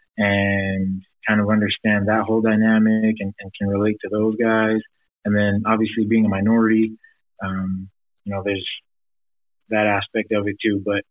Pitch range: 100-110 Hz